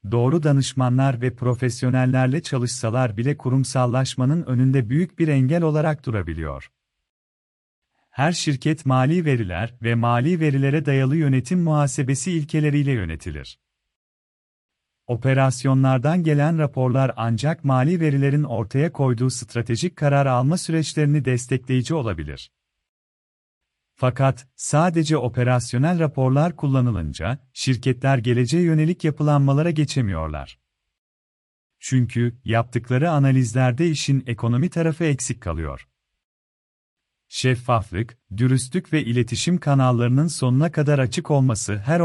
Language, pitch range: Turkish, 120-150 Hz